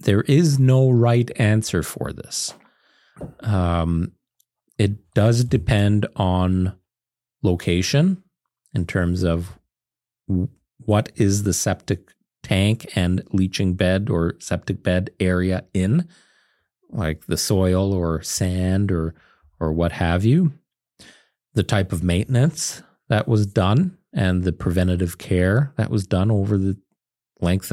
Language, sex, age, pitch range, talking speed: English, male, 40-59, 90-120 Hz, 120 wpm